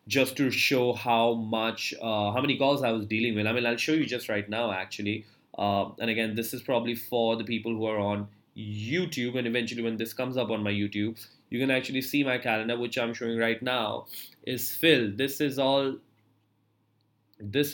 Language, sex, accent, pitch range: English, male, Indian, 115-145 Hz